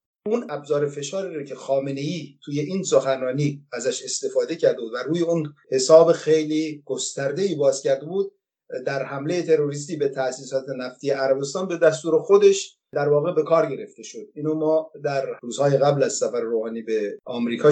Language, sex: English, male